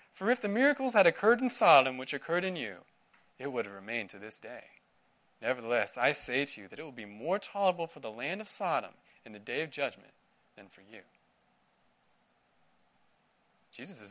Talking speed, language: 185 wpm, English